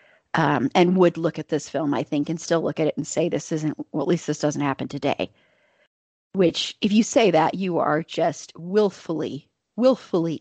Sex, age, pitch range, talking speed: female, 30-49, 150-185 Hz, 200 wpm